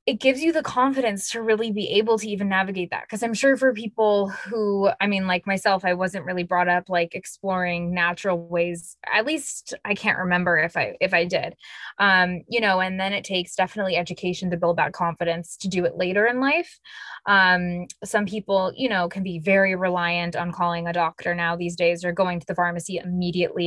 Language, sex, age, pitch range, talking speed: English, female, 20-39, 175-205 Hz, 210 wpm